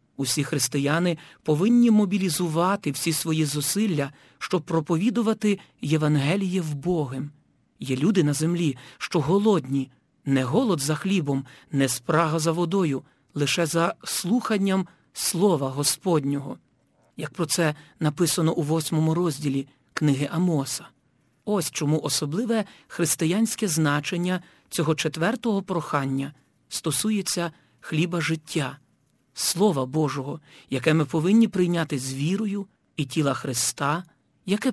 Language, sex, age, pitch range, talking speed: Ukrainian, male, 40-59, 145-180 Hz, 110 wpm